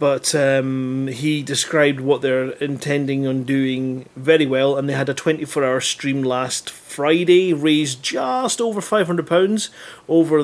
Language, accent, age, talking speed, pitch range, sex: English, British, 30-49, 140 wpm, 130-155 Hz, male